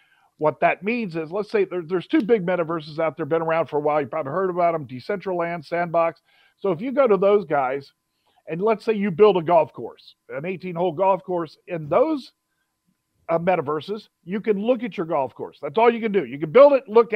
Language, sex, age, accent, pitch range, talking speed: English, male, 50-69, American, 165-220 Hz, 225 wpm